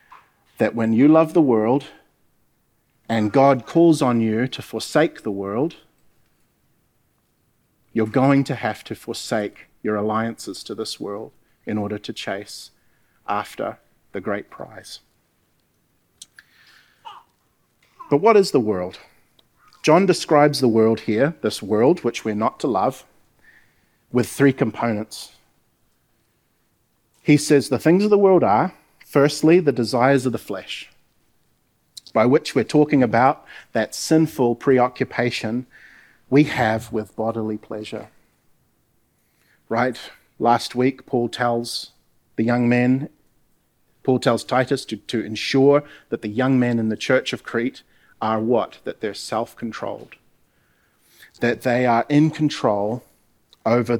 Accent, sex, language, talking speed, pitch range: Australian, male, English, 130 wpm, 110-140 Hz